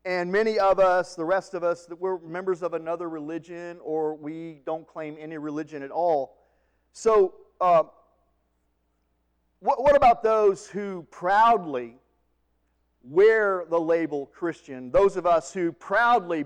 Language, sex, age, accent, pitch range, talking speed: English, male, 40-59, American, 160-220 Hz, 140 wpm